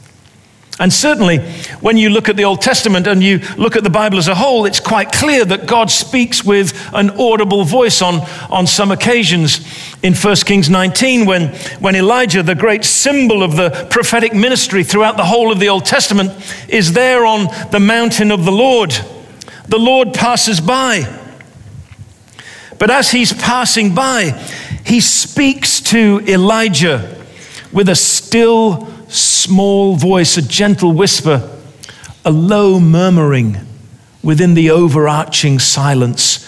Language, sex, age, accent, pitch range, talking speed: English, male, 50-69, British, 155-225 Hz, 145 wpm